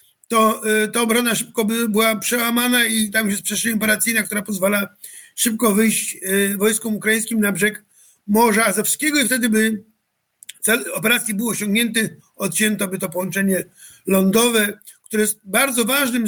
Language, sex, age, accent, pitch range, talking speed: Polish, male, 50-69, native, 205-235 Hz, 135 wpm